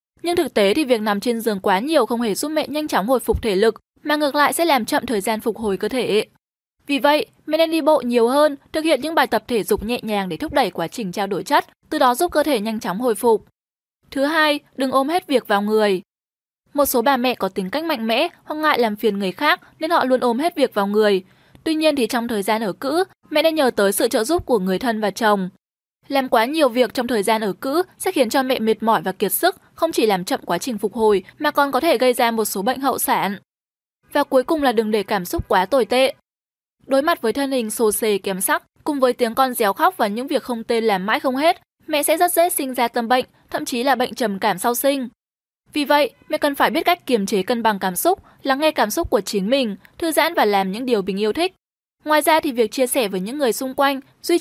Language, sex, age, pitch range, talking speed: Vietnamese, female, 10-29, 220-300 Hz, 270 wpm